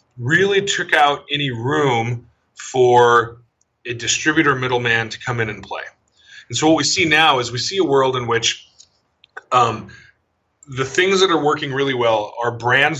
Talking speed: 170 wpm